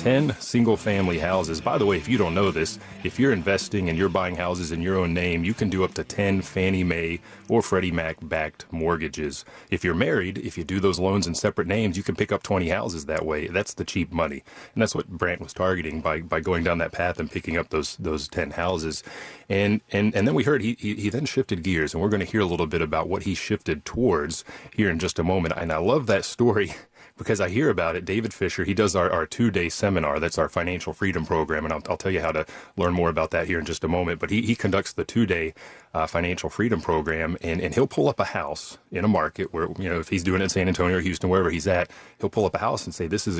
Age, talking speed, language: 30-49, 260 wpm, English